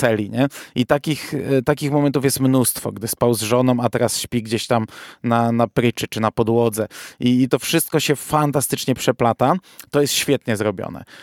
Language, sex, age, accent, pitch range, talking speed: Polish, male, 20-39, native, 120-145 Hz, 170 wpm